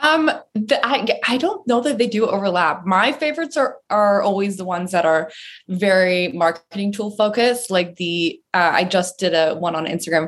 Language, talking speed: English, 195 wpm